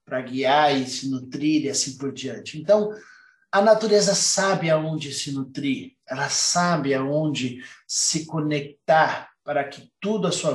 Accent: Brazilian